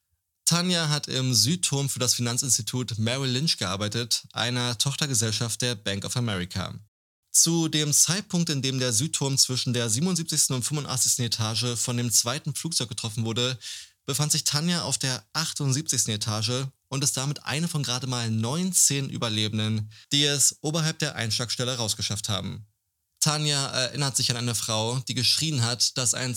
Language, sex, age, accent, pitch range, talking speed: German, male, 20-39, German, 110-140 Hz, 155 wpm